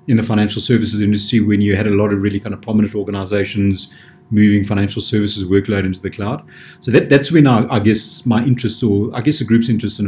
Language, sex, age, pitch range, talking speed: English, male, 30-49, 100-115 Hz, 225 wpm